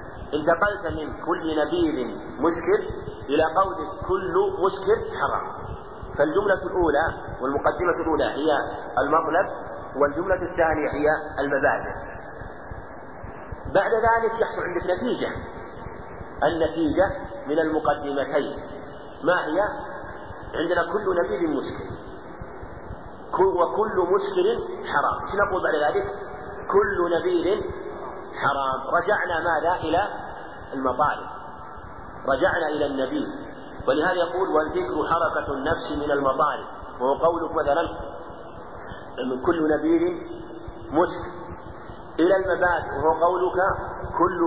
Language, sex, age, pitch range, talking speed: Arabic, male, 50-69, 150-230 Hz, 95 wpm